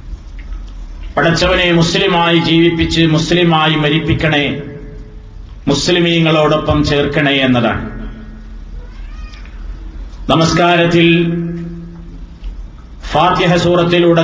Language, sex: Malayalam, male